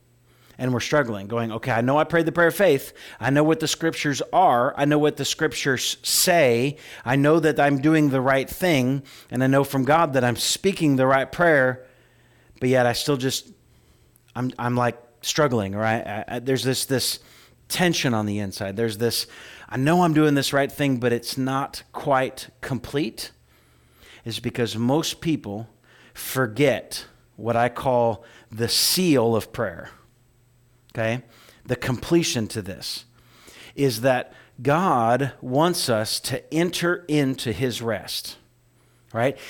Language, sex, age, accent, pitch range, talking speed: English, male, 40-59, American, 115-140 Hz, 160 wpm